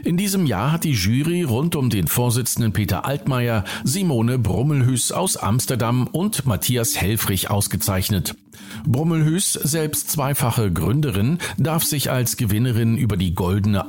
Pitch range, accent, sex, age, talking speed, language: 105-155 Hz, German, male, 50-69, 135 wpm, German